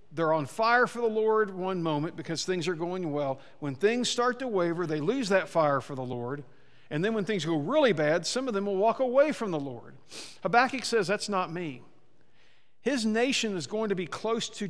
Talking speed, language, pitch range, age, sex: 220 wpm, English, 145-210 Hz, 50-69, male